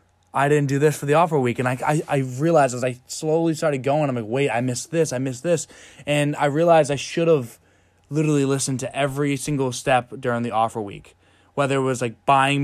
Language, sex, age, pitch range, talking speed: English, male, 20-39, 120-155 Hz, 230 wpm